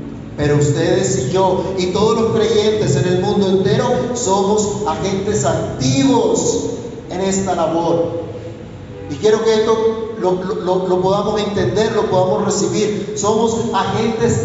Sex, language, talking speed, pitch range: male, Spanish, 135 wpm, 175-230 Hz